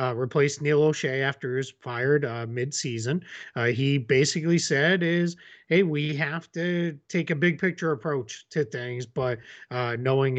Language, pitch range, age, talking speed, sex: English, 125-165 Hz, 30-49, 160 wpm, male